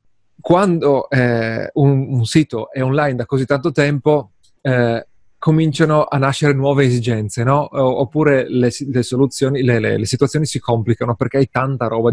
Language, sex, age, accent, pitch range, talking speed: Italian, male, 30-49, native, 120-140 Hz, 160 wpm